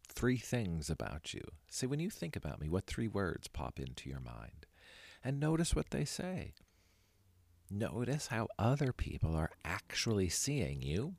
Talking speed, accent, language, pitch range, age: 160 wpm, American, English, 80-110 Hz, 50-69